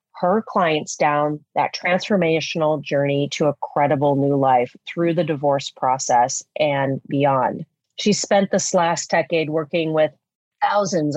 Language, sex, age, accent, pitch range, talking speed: English, female, 30-49, American, 150-190 Hz, 135 wpm